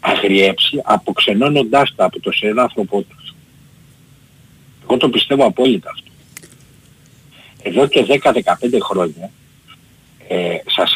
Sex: male